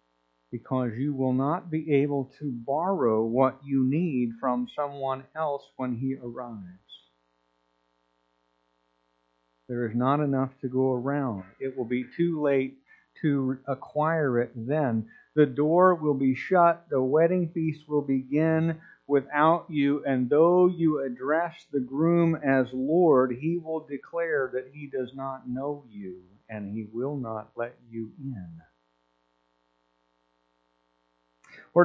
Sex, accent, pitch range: male, American, 110-170 Hz